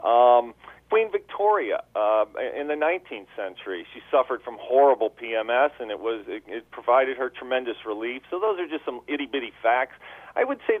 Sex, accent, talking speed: male, American, 185 wpm